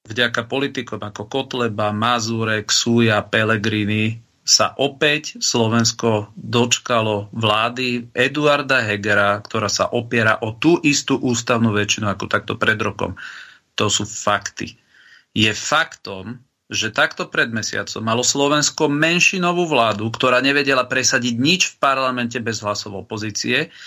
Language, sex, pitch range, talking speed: Slovak, male, 115-140 Hz, 120 wpm